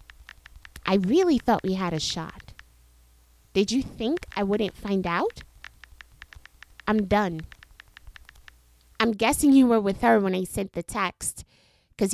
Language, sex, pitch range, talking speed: English, female, 175-230 Hz, 140 wpm